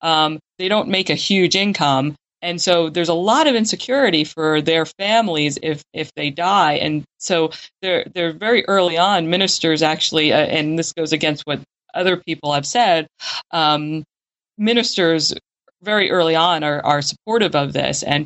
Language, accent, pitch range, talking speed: English, American, 150-175 Hz, 165 wpm